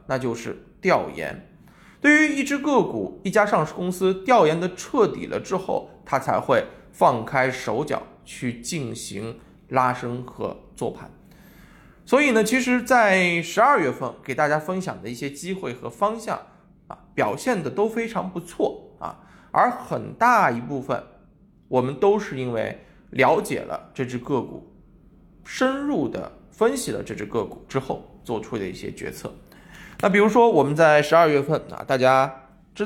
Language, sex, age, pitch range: Chinese, male, 20-39, 150-235 Hz